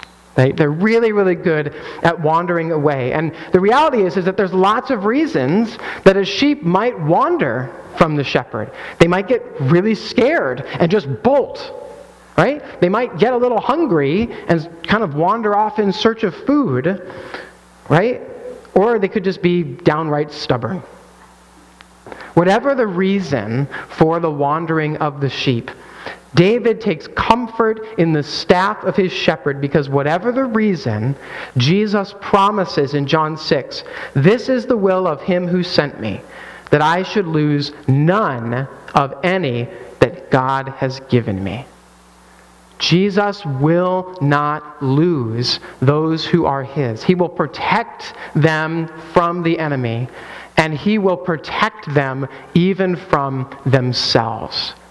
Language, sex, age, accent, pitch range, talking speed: English, male, 40-59, American, 140-200 Hz, 140 wpm